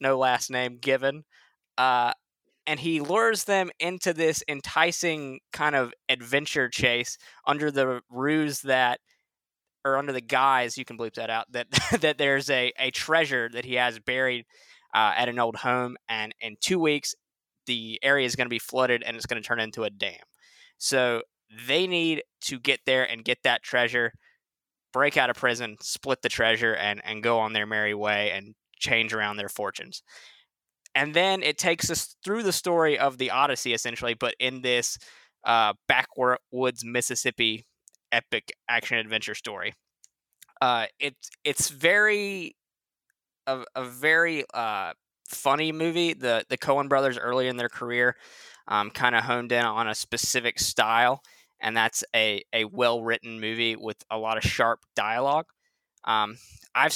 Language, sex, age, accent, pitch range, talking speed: English, male, 20-39, American, 115-140 Hz, 165 wpm